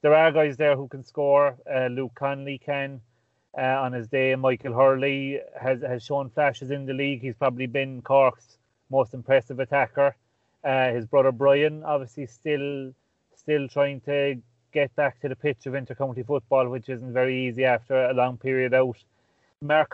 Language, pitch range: English, 125-140 Hz